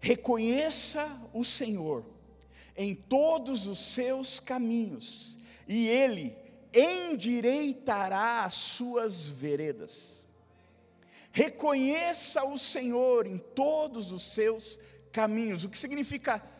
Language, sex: Portuguese, male